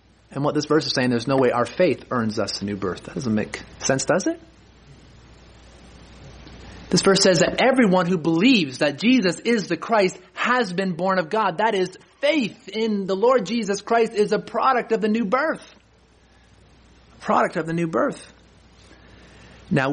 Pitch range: 150-210 Hz